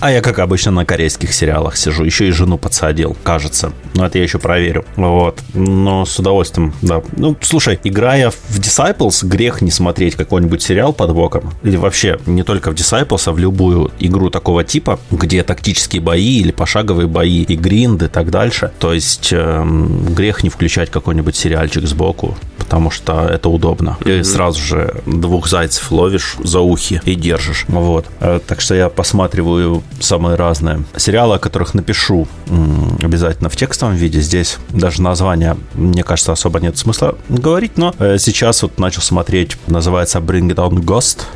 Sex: male